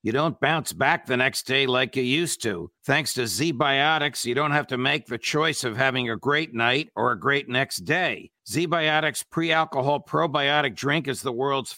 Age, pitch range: 50-69, 135-165 Hz